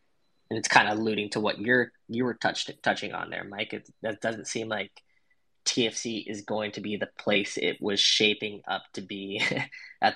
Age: 10-29